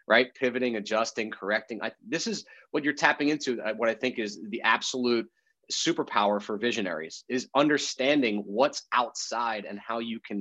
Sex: male